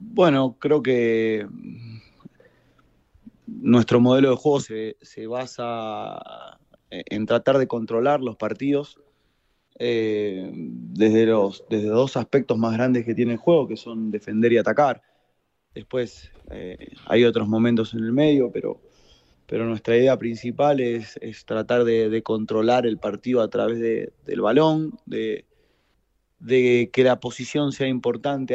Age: 20-39